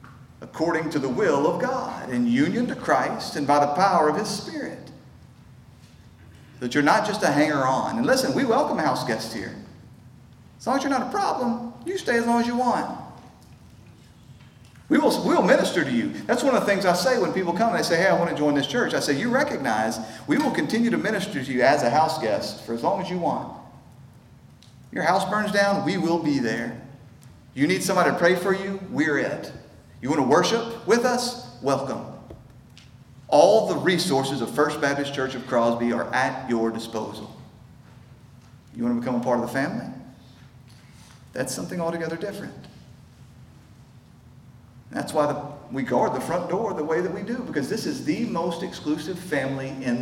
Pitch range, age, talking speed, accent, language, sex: 125-185 Hz, 40-59, 195 wpm, American, English, male